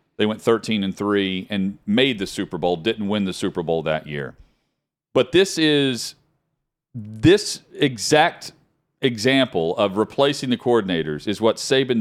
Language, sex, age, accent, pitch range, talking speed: English, male, 40-59, American, 105-145 Hz, 150 wpm